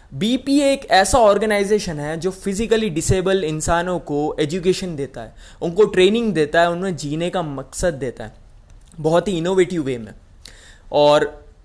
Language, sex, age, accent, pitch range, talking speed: Hindi, male, 20-39, native, 150-210 Hz, 150 wpm